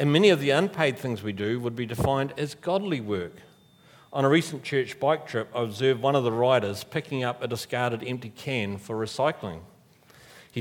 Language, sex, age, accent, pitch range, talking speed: English, male, 50-69, Australian, 125-155 Hz, 200 wpm